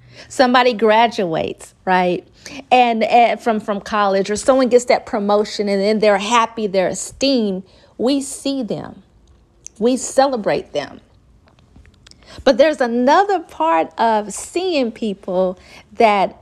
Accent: American